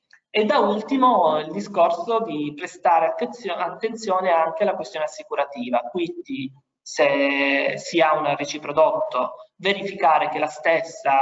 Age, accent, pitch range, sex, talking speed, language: 20-39, native, 155-210 Hz, male, 125 wpm, Italian